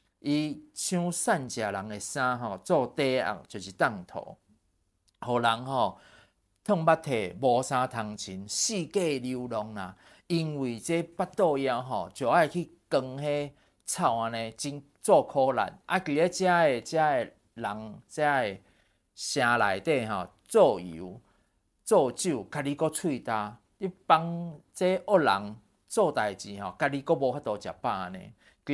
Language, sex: Chinese, male